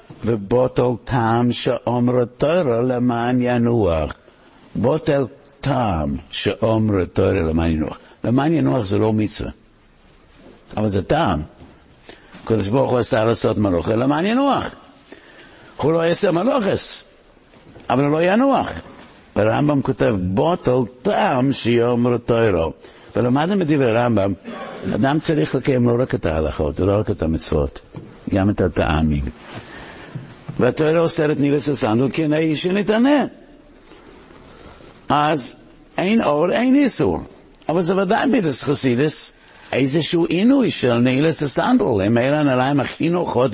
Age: 60-79